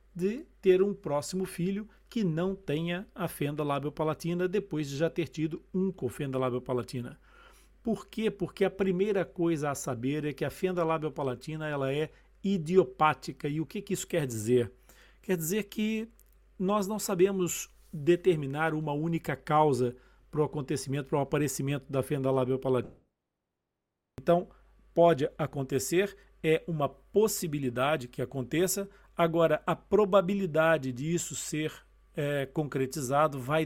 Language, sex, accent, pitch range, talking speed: Portuguese, male, Brazilian, 140-180 Hz, 140 wpm